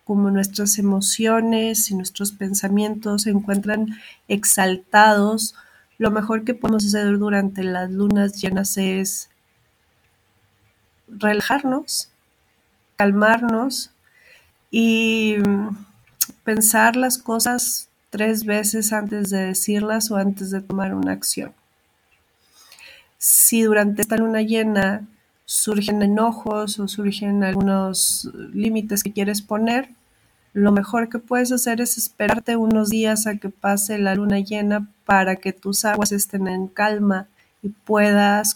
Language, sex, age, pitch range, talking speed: Spanish, female, 30-49, 195-225 Hz, 115 wpm